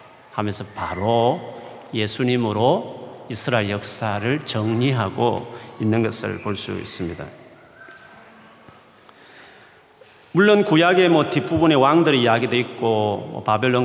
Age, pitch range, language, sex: 40-59, 105-135 Hz, Korean, male